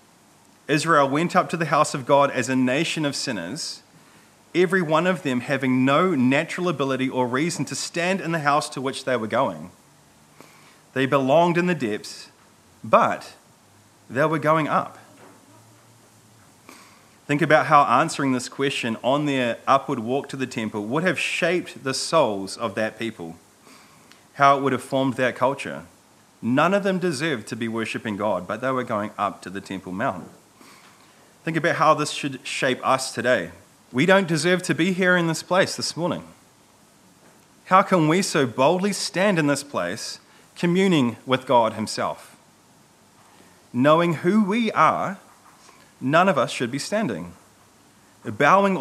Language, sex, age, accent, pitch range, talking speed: English, male, 30-49, Australian, 125-165 Hz, 160 wpm